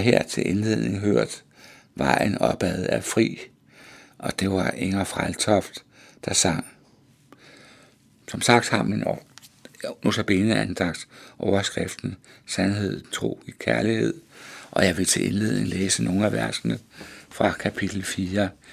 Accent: native